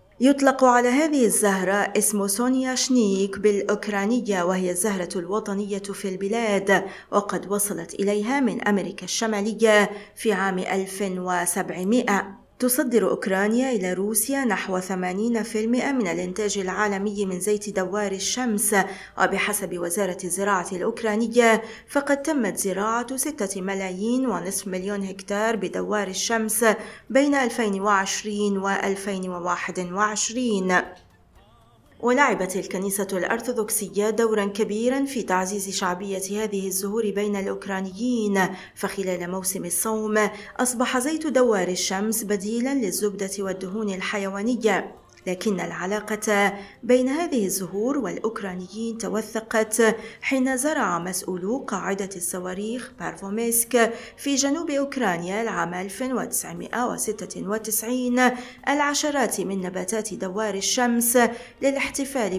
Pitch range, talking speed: 195-240 Hz, 95 wpm